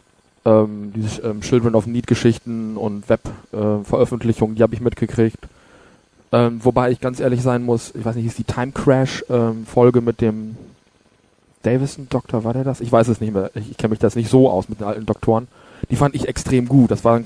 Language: German